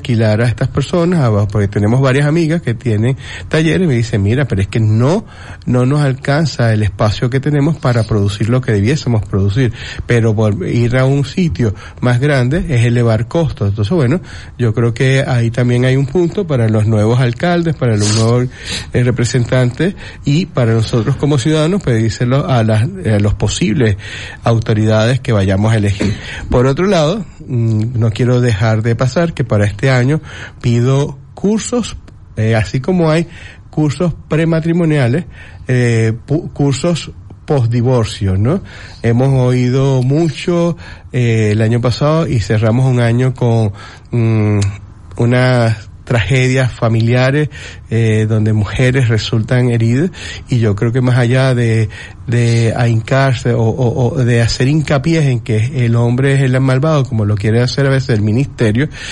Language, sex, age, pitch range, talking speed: Spanish, male, 30-49, 110-135 Hz, 155 wpm